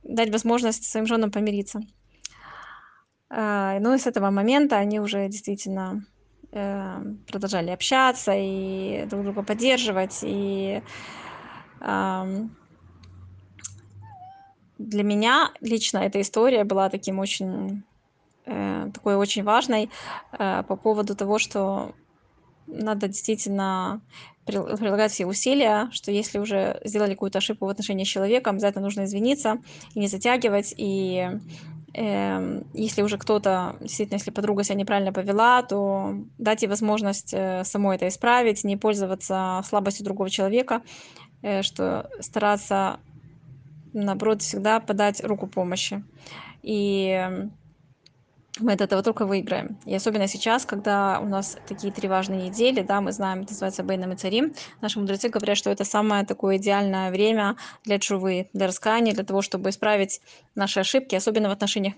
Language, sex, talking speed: Russian, female, 125 wpm